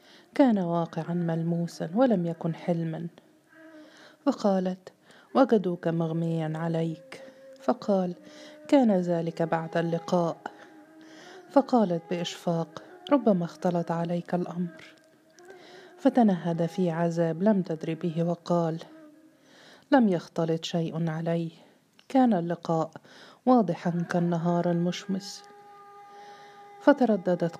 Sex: female